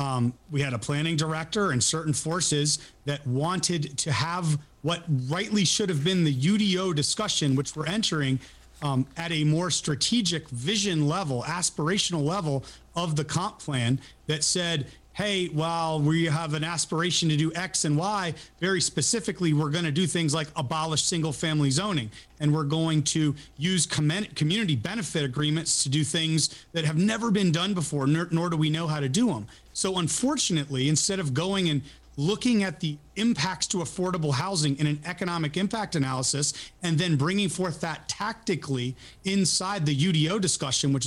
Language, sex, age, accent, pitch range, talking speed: English, male, 30-49, American, 145-190 Hz, 170 wpm